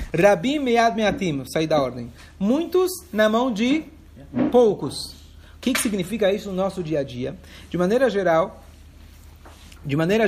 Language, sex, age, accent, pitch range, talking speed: Portuguese, male, 40-59, Brazilian, 135-205 Hz, 145 wpm